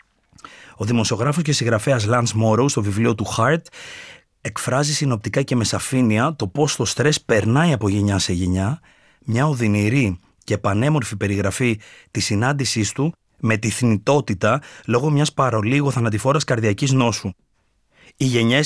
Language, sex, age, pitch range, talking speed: Greek, male, 30-49, 105-145 Hz, 140 wpm